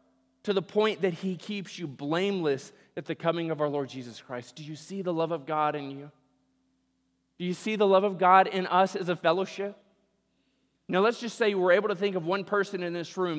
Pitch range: 125-195 Hz